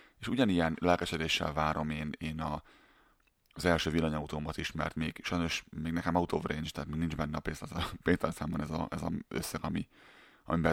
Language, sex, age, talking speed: Hungarian, male, 30-49, 180 wpm